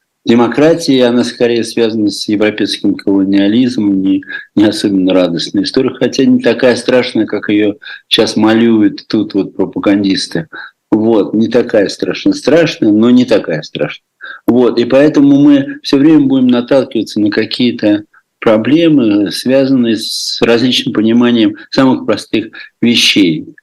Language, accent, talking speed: Russian, native, 125 wpm